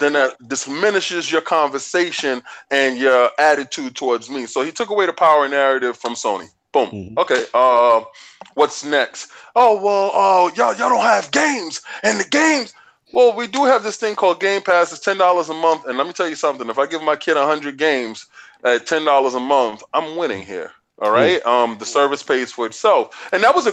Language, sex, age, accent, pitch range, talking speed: English, male, 20-39, American, 135-210 Hz, 200 wpm